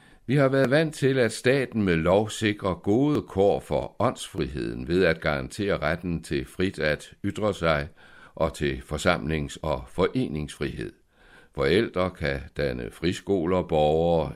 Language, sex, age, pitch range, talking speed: Danish, male, 60-79, 75-105 Hz, 135 wpm